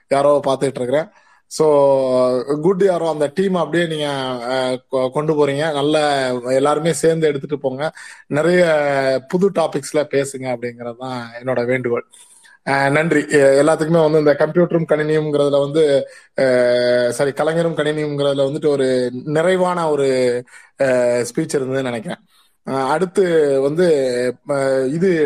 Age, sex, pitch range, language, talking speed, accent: 20-39, male, 135-165 Hz, Tamil, 105 wpm, native